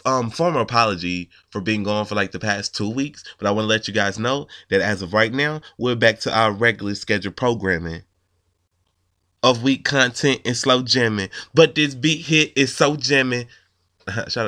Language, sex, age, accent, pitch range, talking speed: English, male, 20-39, American, 95-125 Hz, 190 wpm